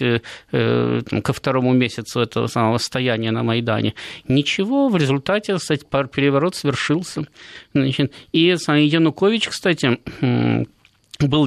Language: Russian